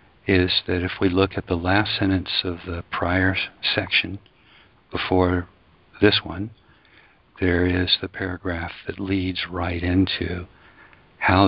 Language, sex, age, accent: English, male, 60-79, American